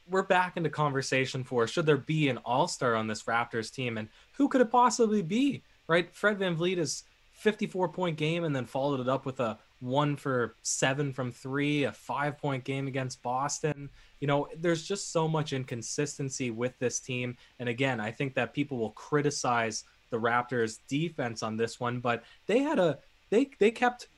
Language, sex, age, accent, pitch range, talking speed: English, male, 20-39, American, 120-165 Hz, 190 wpm